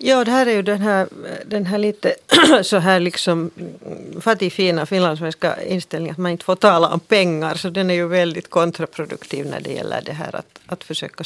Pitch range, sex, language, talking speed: 165-195 Hz, female, Finnish, 195 wpm